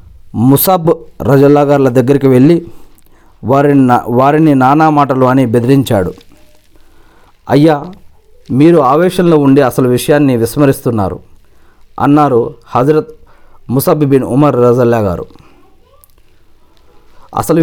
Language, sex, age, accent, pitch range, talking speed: Telugu, male, 50-69, native, 115-155 Hz, 90 wpm